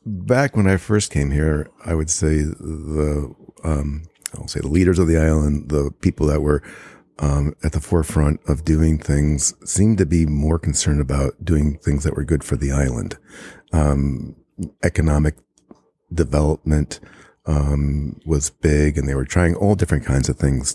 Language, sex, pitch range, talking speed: English, male, 70-80 Hz, 170 wpm